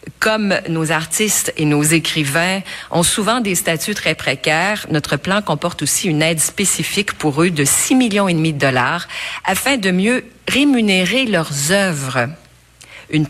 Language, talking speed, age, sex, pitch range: French, 160 wpm, 50-69, female, 150-195 Hz